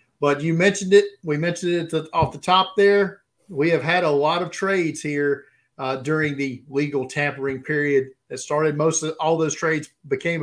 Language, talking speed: English, 190 wpm